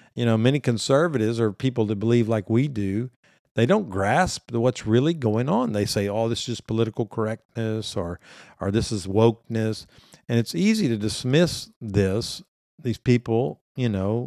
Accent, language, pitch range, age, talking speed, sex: American, English, 105-125 Hz, 50-69, 175 wpm, male